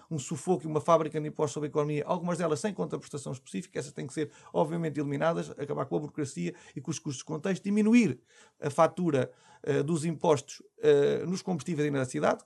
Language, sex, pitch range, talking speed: Portuguese, male, 150-200 Hz, 205 wpm